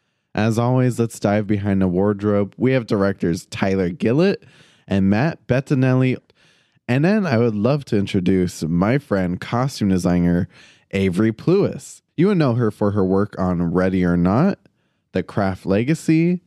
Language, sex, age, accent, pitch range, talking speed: English, male, 20-39, American, 95-125 Hz, 155 wpm